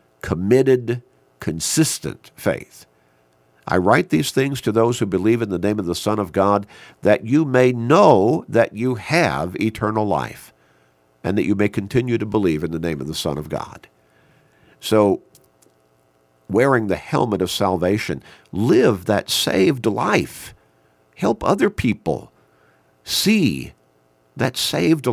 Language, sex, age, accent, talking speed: English, male, 50-69, American, 140 wpm